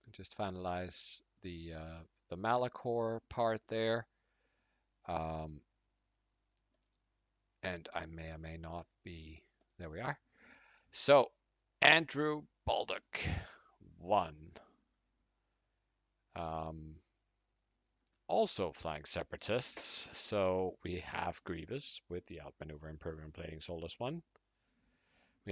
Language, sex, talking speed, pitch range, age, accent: English, male, 90 wpm, 85-115 Hz, 50-69, American